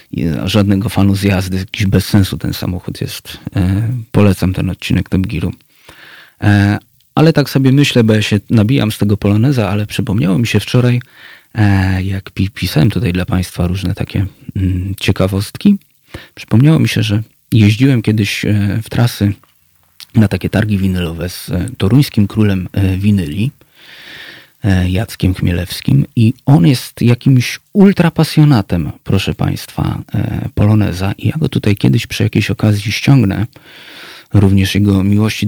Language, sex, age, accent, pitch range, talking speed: Polish, male, 30-49, native, 95-120 Hz, 140 wpm